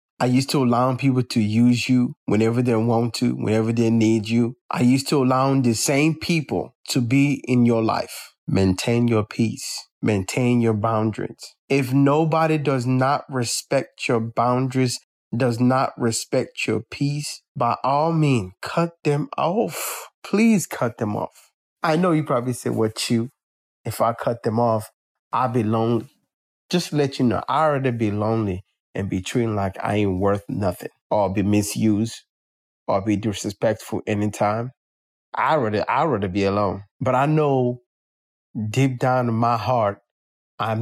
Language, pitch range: English, 105-135 Hz